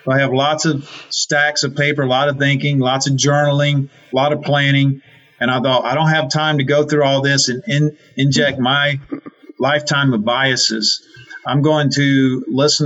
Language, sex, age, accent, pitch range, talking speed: English, male, 40-59, American, 130-150 Hz, 185 wpm